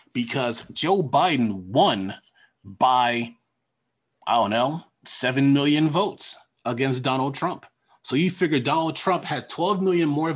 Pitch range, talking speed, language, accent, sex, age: 125-165 Hz, 135 wpm, English, American, male, 30-49